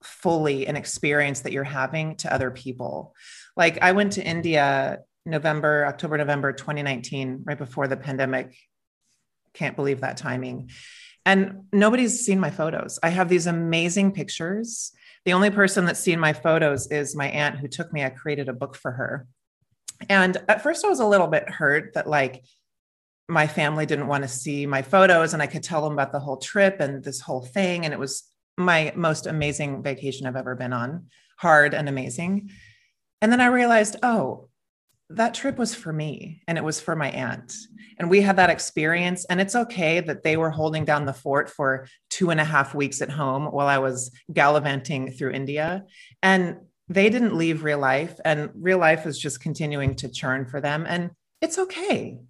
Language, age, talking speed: English, 30-49, 190 wpm